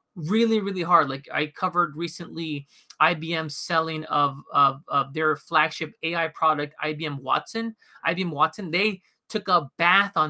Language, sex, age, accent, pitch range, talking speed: English, male, 20-39, American, 155-195 Hz, 145 wpm